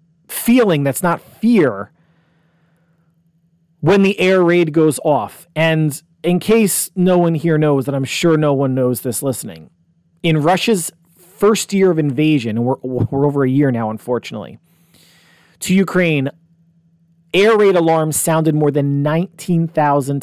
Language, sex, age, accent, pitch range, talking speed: English, male, 40-59, American, 140-165 Hz, 140 wpm